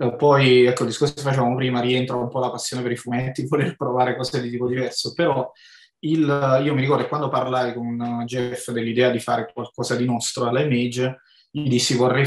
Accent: native